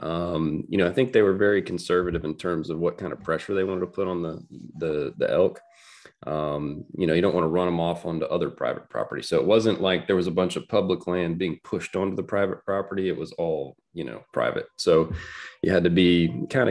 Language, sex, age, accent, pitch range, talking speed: English, male, 30-49, American, 80-95 Hz, 245 wpm